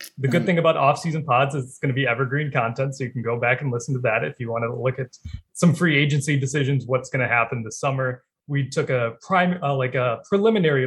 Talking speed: 255 wpm